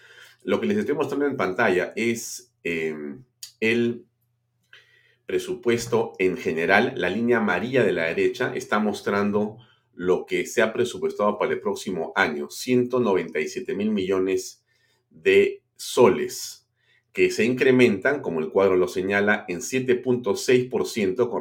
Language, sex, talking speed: Spanish, male, 130 wpm